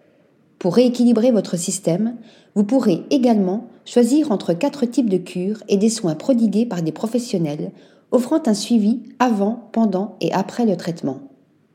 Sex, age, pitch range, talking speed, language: female, 40-59, 185-240 Hz, 150 wpm, French